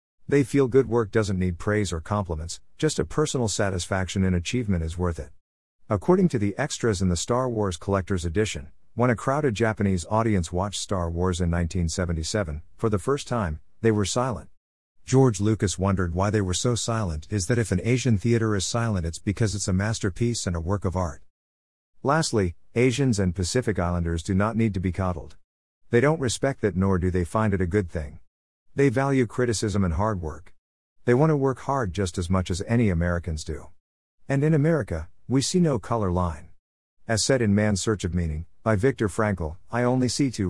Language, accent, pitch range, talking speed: English, American, 85-115 Hz, 200 wpm